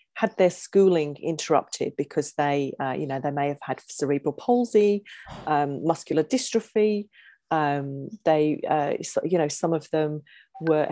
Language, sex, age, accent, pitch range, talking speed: English, female, 40-59, British, 155-200 Hz, 150 wpm